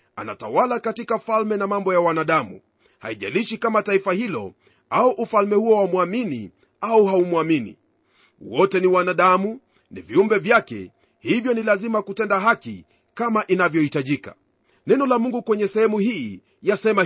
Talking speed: 130 wpm